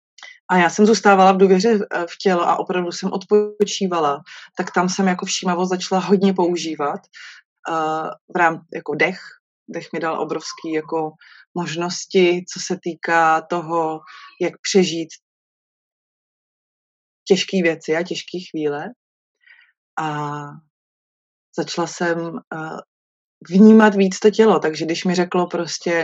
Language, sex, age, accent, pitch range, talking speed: Czech, female, 20-39, native, 165-195 Hz, 120 wpm